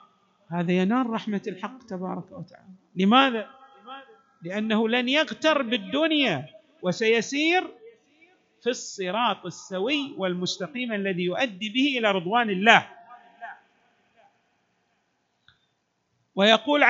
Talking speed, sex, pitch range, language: 80 wpm, male, 170-235 Hz, Arabic